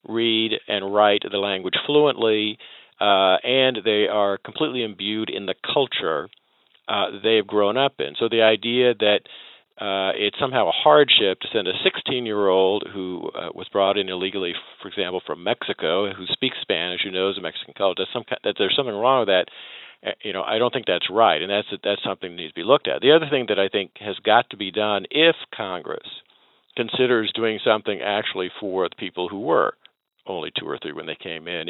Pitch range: 100-125 Hz